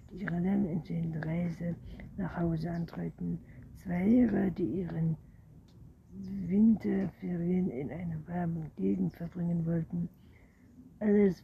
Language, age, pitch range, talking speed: German, 60-79, 160-185 Hz, 105 wpm